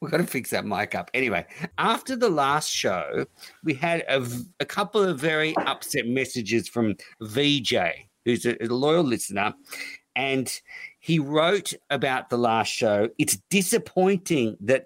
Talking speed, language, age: 150 wpm, English, 50-69